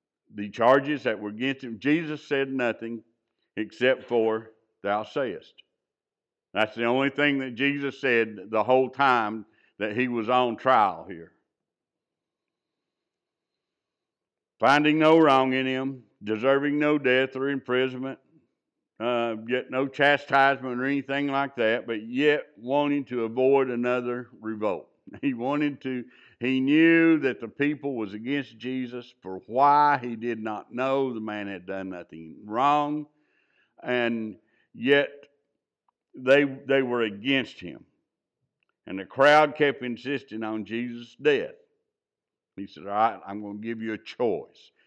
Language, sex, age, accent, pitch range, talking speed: English, male, 60-79, American, 115-140 Hz, 140 wpm